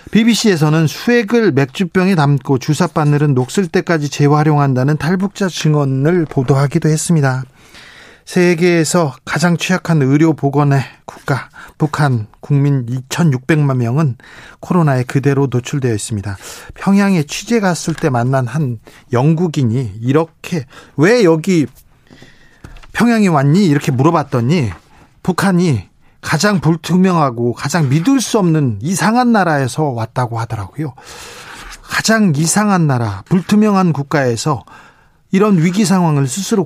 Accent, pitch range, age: native, 135-180 Hz, 40-59